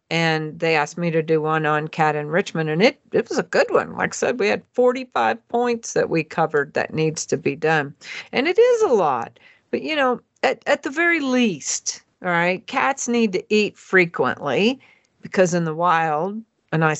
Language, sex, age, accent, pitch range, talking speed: English, female, 50-69, American, 165-235 Hz, 205 wpm